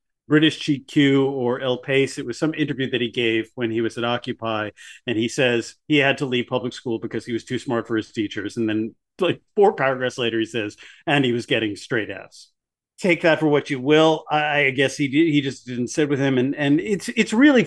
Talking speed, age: 240 wpm, 40-59